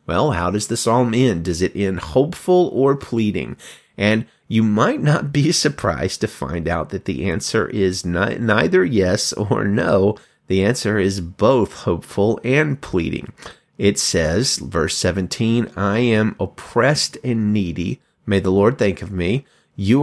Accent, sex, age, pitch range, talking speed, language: American, male, 30-49, 95-125 Hz, 155 wpm, English